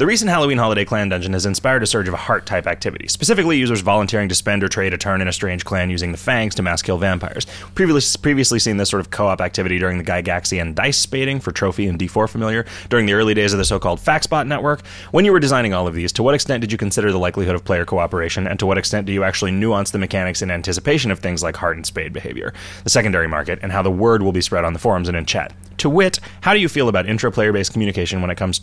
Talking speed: 260 wpm